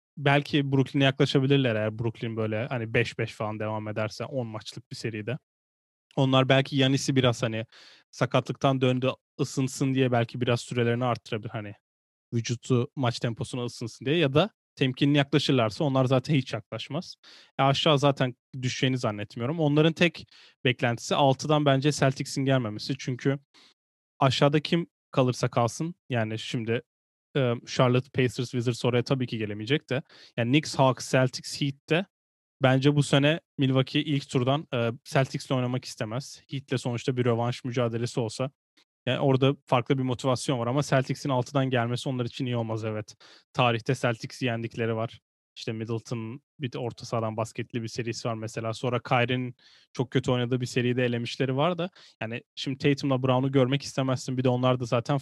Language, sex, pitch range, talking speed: Turkish, male, 120-140 Hz, 155 wpm